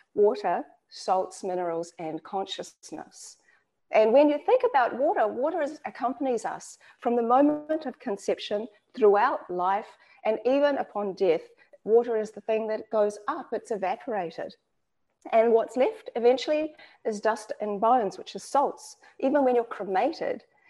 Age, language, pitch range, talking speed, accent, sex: 40-59, English, 210-305 Hz, 140 wpm, Australian, female